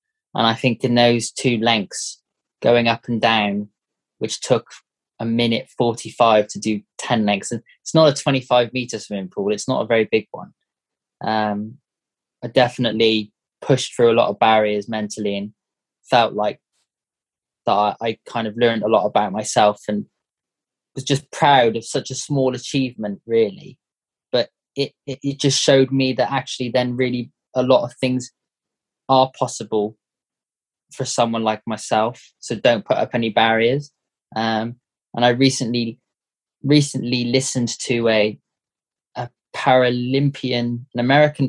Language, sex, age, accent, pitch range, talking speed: English, male, 20-39, British, 110-130 Hz, 150 wpm